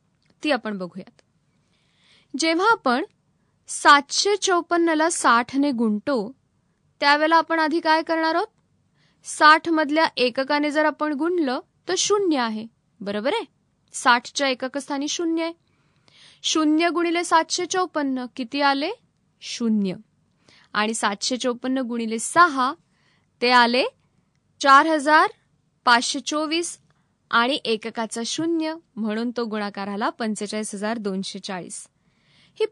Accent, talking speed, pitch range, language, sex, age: native, 95 wpm, 220-315 Hz, Marathi, female, 20-39